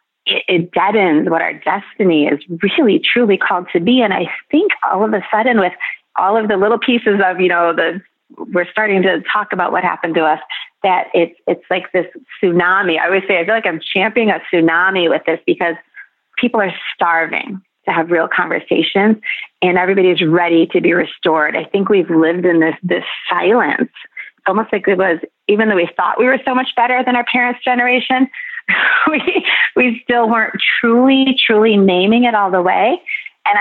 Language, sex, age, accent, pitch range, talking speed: English, female, 30-49, American, 175-235 Hz, 190 wpm